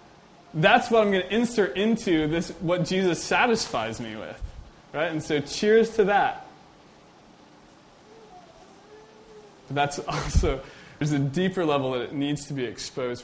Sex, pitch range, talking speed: male, 115-150 Hz, 145 wpm